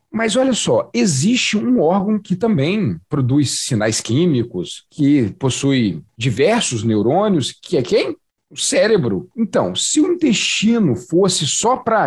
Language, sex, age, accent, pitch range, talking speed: Portuguese, male, 40-59, Brazilian, 150-235 Hz, 135 wpm